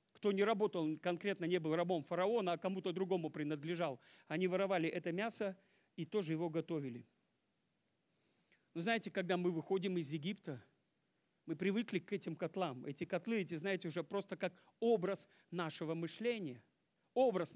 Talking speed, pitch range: 145 wpm, 170-250 Hz